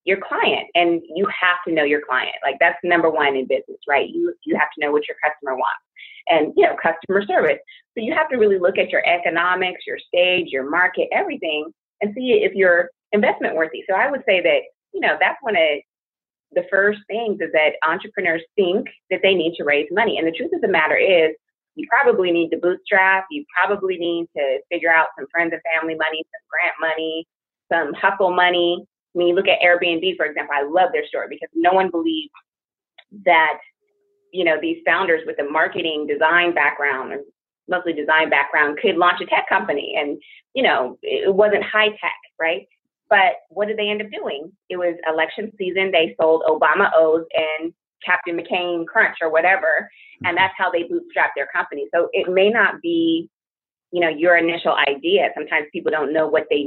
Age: 30-49